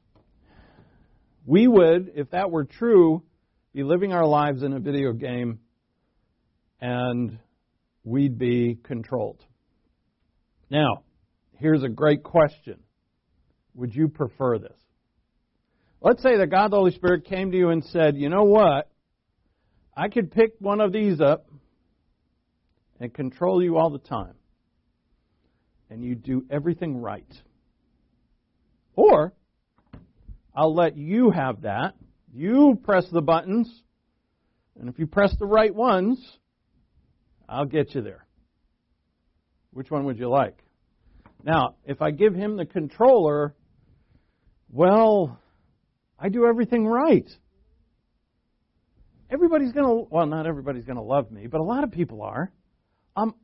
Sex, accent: male, American